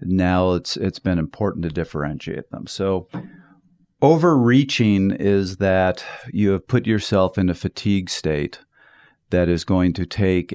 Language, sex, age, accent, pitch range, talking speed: English, male, 40-59, American, 90-105 Hz, 140 wpm